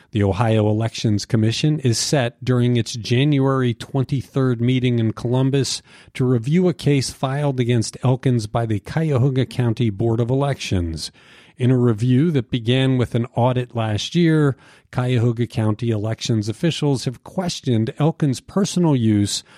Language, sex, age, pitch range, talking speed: English, male, 50-69, 115-145 Hz, 140 wpm